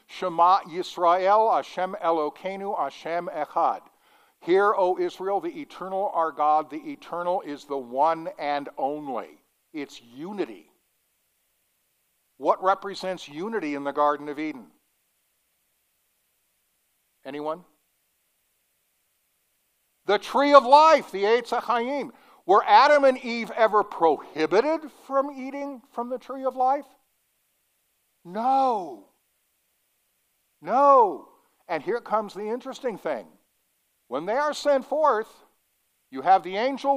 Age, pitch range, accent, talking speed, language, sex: 60-79, 175-260 Hz, American, 110 wpm, English, male